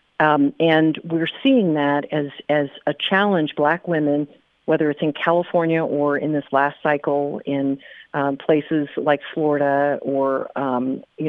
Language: English